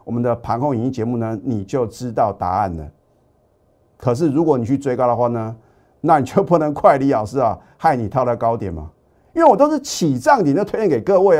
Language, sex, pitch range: Chinese, male, 115-170 Hz